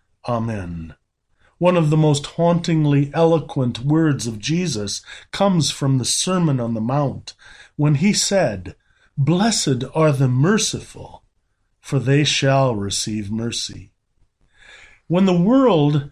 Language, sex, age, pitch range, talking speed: English, male, 40-59, 130-185 Hz, 120 wpm